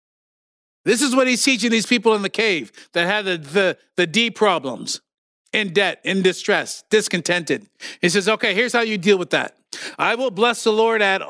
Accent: American